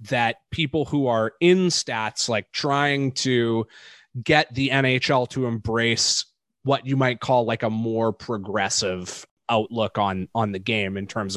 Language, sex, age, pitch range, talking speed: English, male, 20-39, 110-145 Hz, 155 wpm